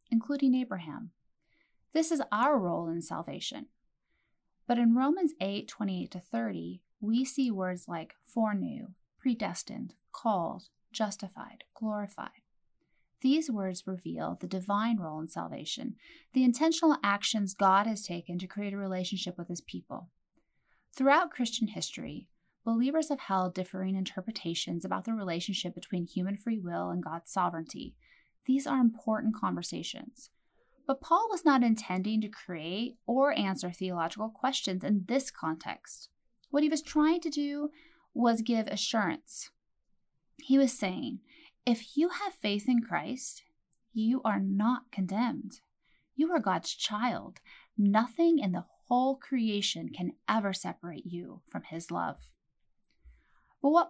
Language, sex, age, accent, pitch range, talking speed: English, female, 30-49, American, 190-265 Hz, 135 wpm